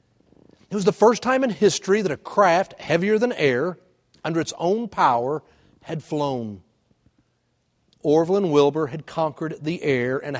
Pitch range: 140-200 Hz